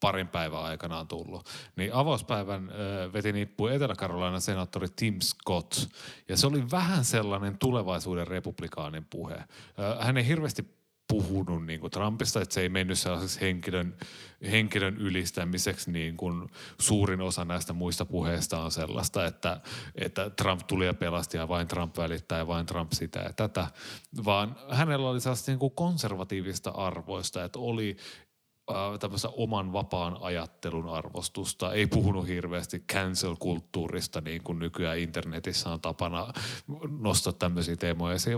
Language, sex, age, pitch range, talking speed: Finnish, male, 30-49, 90-110 Hz, 135 wpm